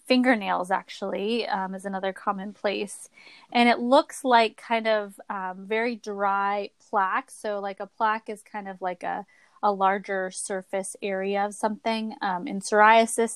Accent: American